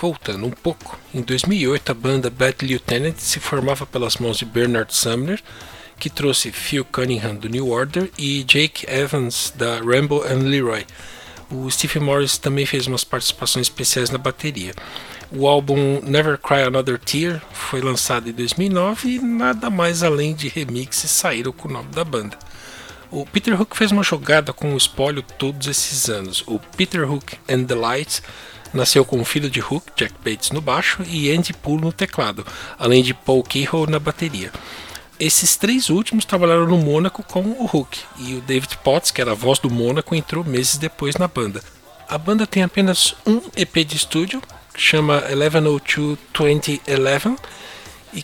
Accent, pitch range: Brazilian, 130-165 Hz